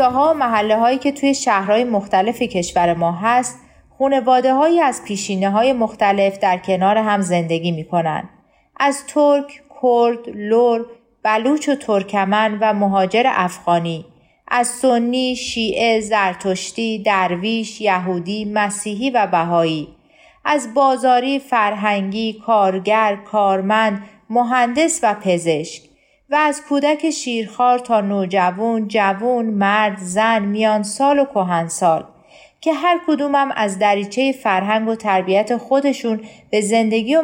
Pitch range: 190-255 Hz